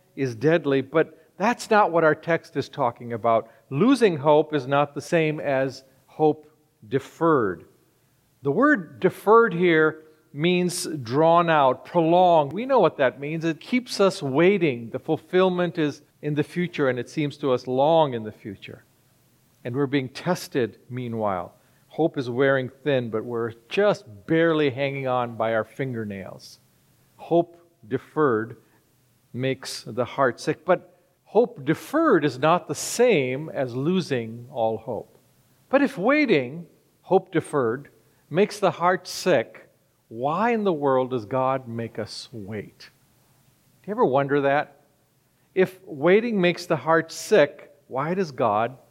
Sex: male